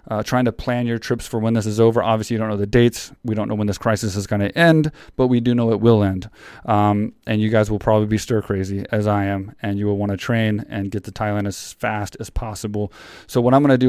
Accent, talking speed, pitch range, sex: American, 285 wpm, 105-125 Hz, male